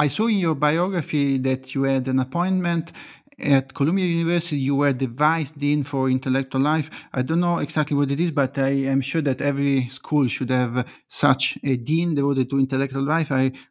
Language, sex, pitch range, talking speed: English, male, 125-155 Hz, 195 wpm